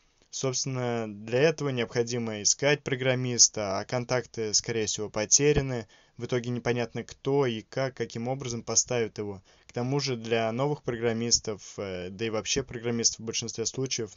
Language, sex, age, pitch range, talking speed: Russian, male, 20-39, 110-125 Hz, 145 wpm